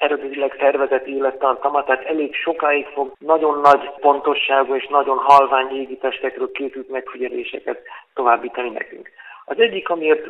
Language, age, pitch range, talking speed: Hungarian, 50-69, 135-165 Hz, 120 wpm